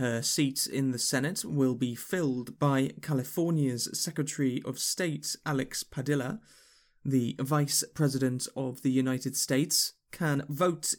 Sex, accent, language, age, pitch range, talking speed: male, British, English, 20-39, 130-160 Hz, 130 wpm